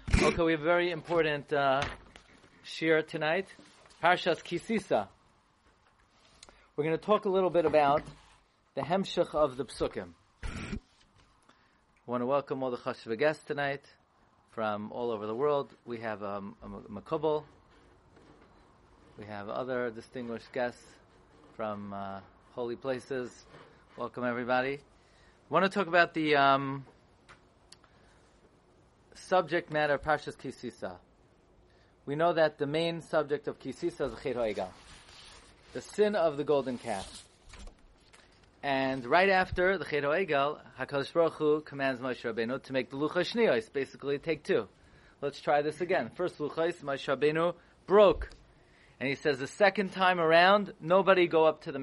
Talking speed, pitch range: 135 wpm, 125-160 Hz